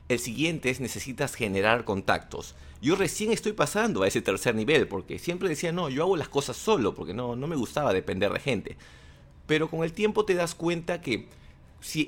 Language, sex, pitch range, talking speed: English, male, 110-145 Hz, 200 wpm